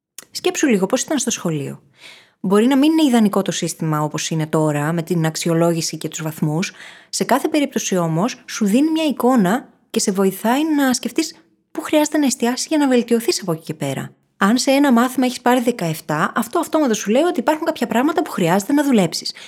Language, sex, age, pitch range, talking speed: Greek, female, 20-39, 170-250 Hz, 205 wpm